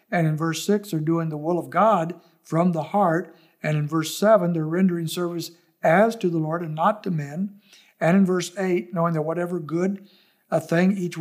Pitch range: 160-205 Hz